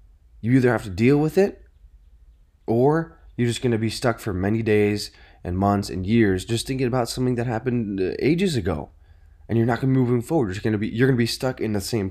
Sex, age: male, 20-39